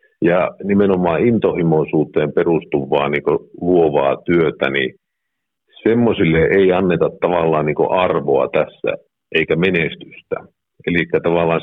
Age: 50-69